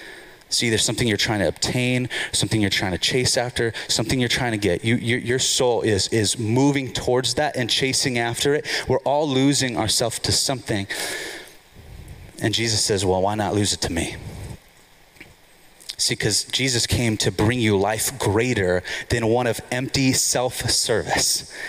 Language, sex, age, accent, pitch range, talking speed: English, male, 30-49, American, 110-150 Hz, 165 wpm